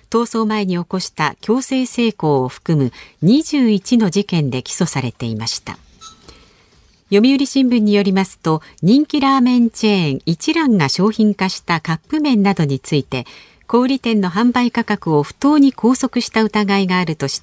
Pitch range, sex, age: 155-235 Hz, female, 50-69